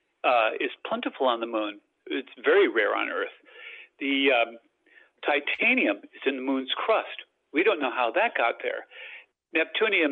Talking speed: 160 wpm